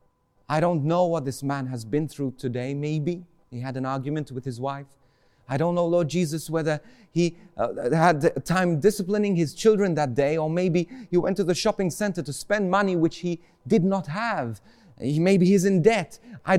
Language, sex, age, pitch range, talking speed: English, male, 30-49, 135-195 Hz, 195 wpm